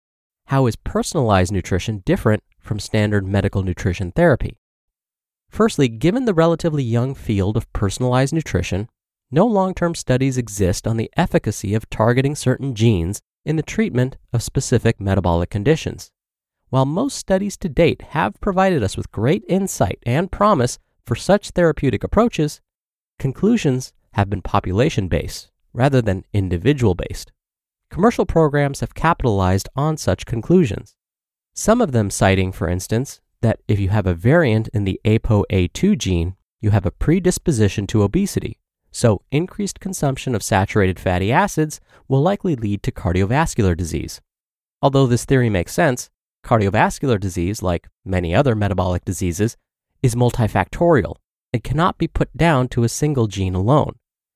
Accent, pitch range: American, 100-150 Hz